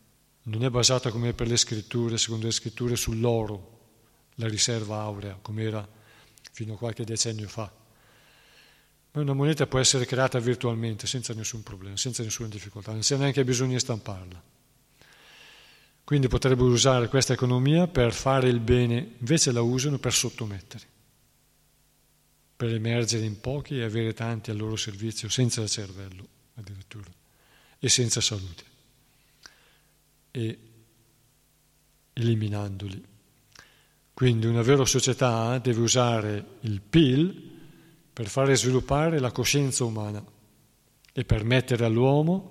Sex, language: male, Italian